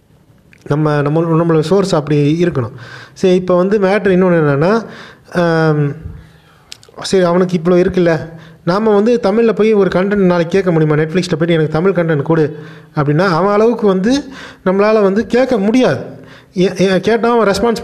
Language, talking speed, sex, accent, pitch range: Tamil, 145 wpm, male, native, 150-185 Hz